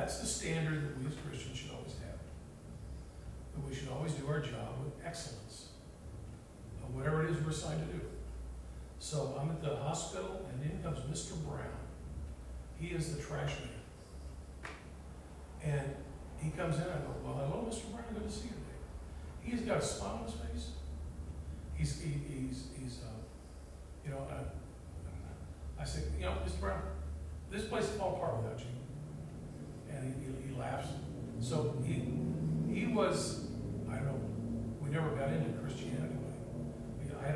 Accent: American